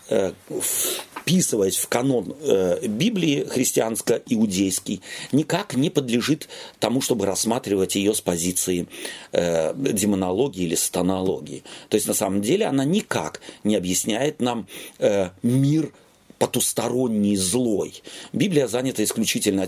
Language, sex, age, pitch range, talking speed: Russian, male, 40-59, 105-145 Hz, 105 wpm